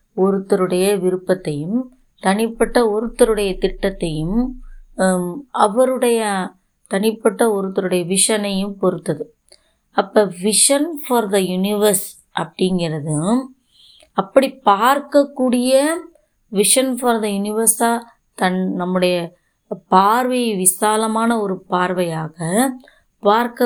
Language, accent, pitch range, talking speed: Tamil, native, 180-240 Hz, 75 wpm